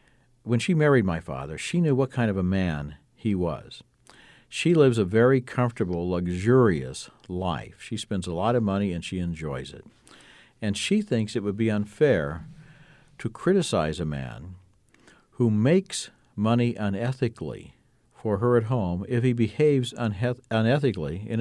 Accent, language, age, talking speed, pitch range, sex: American, English, 60-79, 155 wpm, 90-120 Hz, male